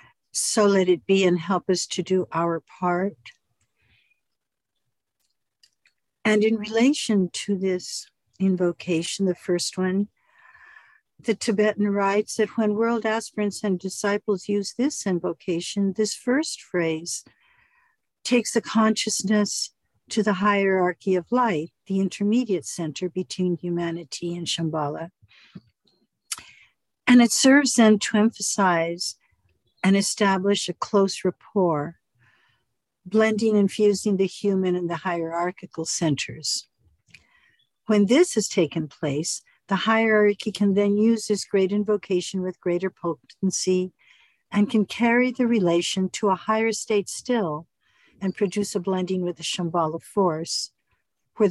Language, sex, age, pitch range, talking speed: English, female, 60-79, 175-215 Hz, 120 wpm